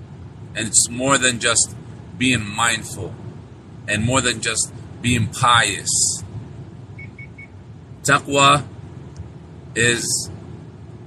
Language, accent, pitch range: English, American, 115-130 Hz